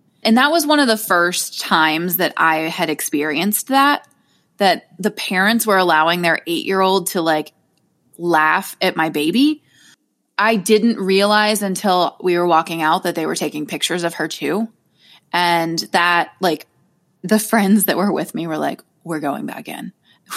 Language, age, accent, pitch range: English, 20-39, American, 175-220 Hz